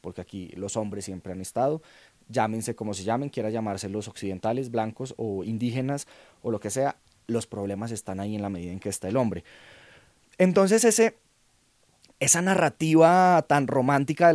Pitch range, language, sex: 110-150 Hz, Spanish, male